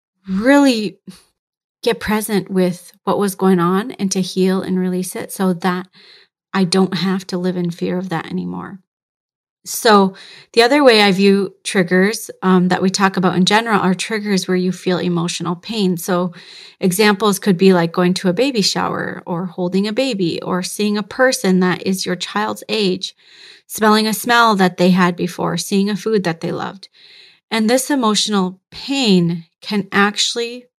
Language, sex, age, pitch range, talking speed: English, female, 30-49, 180-200 Hz, 175 wpm